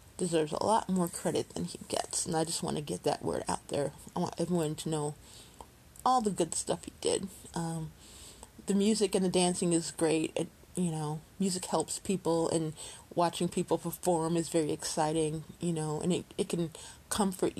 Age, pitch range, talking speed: 30-49, 160-185 Hz, 195 wpm